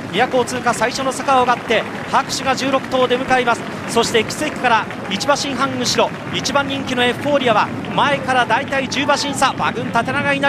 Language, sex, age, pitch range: Japanese, male, 40-59, 245-280 Hz